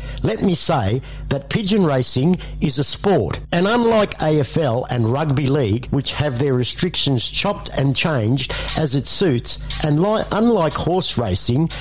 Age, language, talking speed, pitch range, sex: 60-79, English, 145 wpm, 130-170 Hz, male